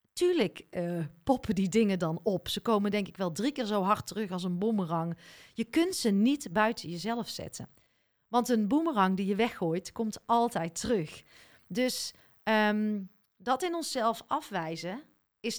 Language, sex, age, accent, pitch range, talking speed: Dutch, female, 40-59, Dutch, 185-255 Hz, 160 wpm